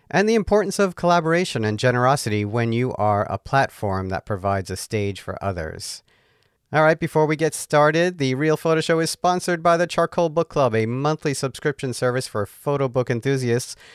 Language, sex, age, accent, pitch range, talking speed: English, male, 50-69, American, 105-145 Hz, 185 wpm